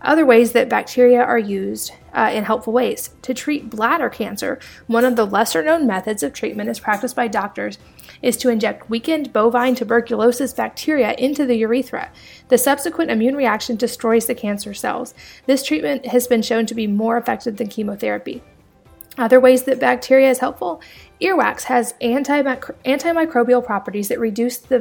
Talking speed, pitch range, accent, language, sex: 165 wpm, 225-255 Hz, American, English, female